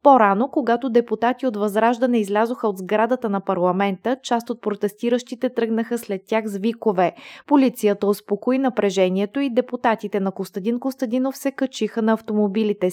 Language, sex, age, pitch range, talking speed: Bulgarian, female, 20-39, 205-245 Hz, 135 wpm